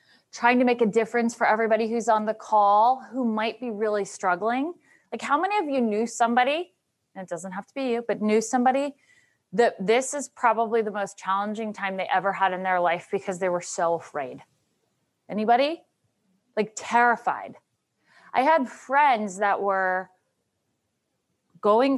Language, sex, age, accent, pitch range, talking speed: English, female, 30-49, American, 190-235 Hz, 165 wpm